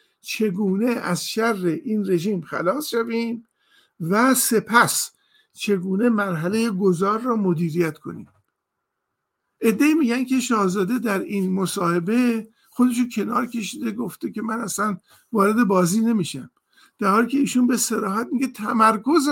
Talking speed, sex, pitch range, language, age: 125 wpm, male, 180-235 Hz, Persian, 50-69